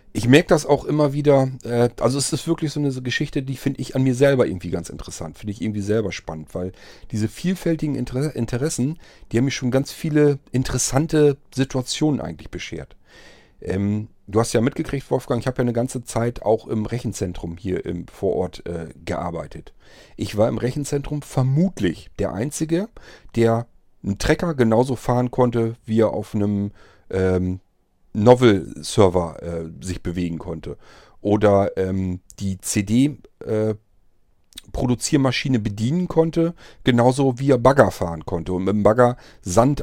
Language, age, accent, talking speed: German, 40-59, German, 160 wpm